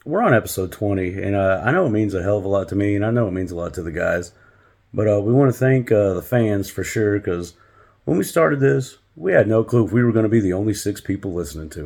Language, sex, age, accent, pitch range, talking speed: English, male, 40-59, American, 100-130 Hz, 295 wpm